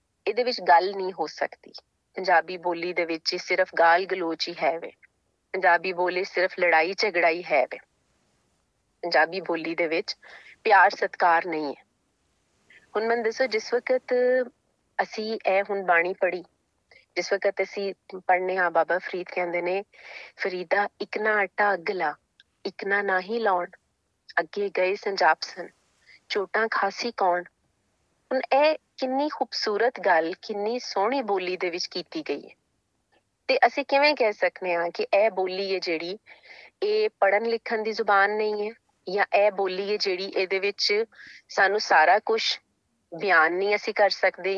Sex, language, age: female, Punjabi, 30-49